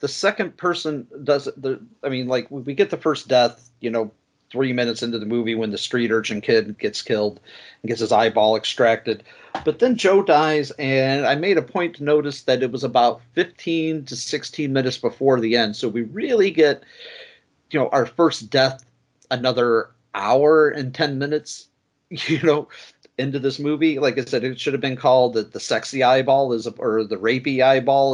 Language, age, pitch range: English, 40-59, 115-150 Hz